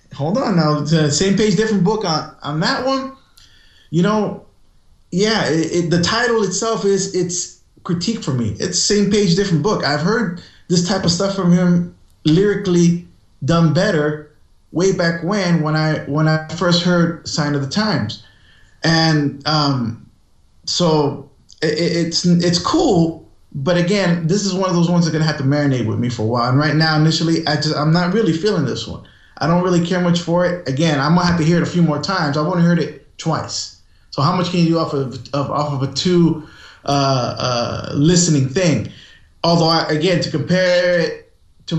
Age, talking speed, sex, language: 20-39, 200 wpm, male, English